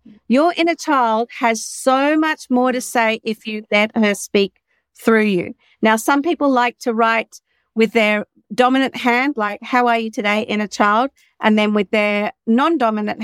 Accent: Australian